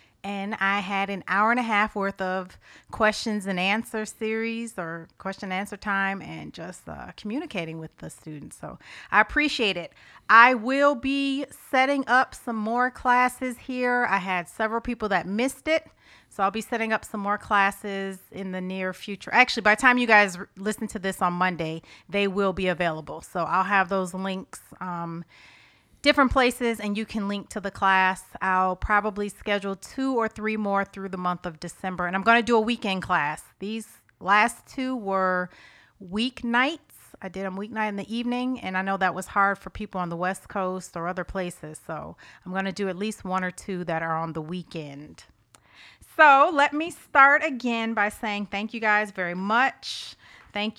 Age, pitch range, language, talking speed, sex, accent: 30-49, 185-230 Hz, English, 190 wpm, female, American